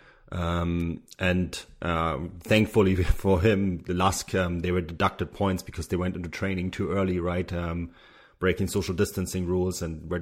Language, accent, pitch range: English, German, 90-105 Hz